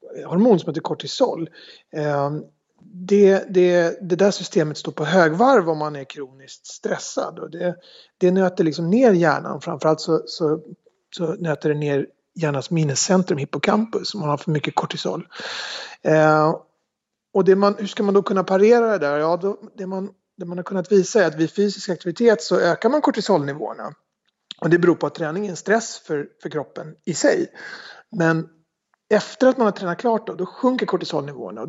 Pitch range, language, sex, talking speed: 160-205 Hz, Swedish, male, 175 wpm